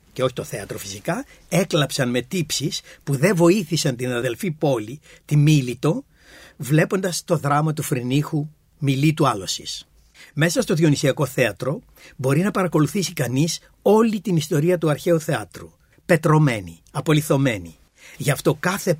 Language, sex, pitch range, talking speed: Greek, male, 130-175 Hz, 135 wpm